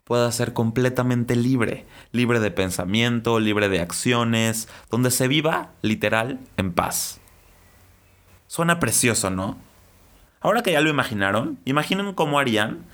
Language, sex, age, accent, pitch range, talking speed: Spanish, male, 30-49, Mexican, 100-130 Hz, 125 wpm